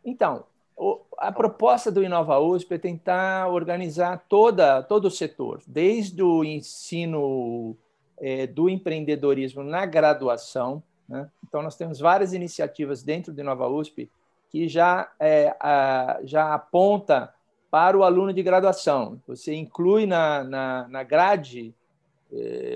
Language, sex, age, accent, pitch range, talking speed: Portuguese, male, 50-69, Brazilian, 140-180 Hz, 125 wpm